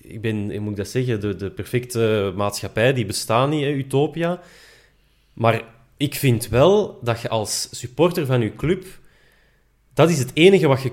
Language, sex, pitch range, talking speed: Dutch, male, 115-150 Hz, 175 wpm